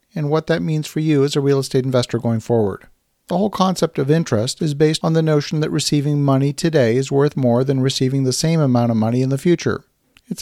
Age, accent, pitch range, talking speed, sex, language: 50-69, American, 125-155 Hz, 235 wpm, male, English